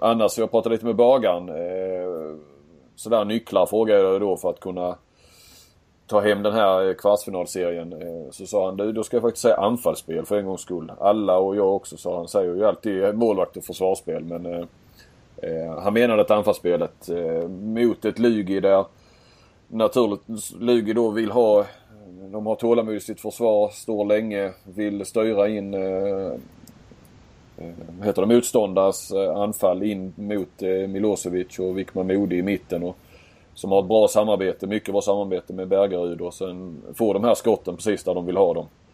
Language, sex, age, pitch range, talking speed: Swedish, male, 30-49, 90-110 Hz, 165 wpm